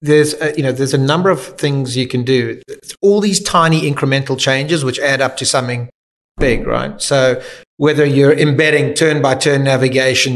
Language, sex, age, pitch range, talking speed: English, male, 30-49, 130-155 Hz, 175 wpm